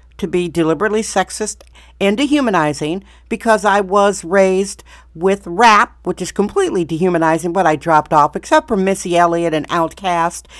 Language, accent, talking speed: English, American, 140 wpm